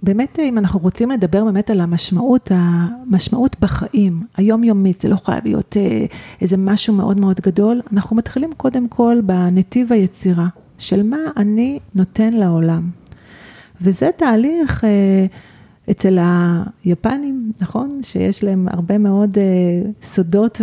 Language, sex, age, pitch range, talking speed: Hebrew, female, 40-59, 180-215 Hz, 125 wpm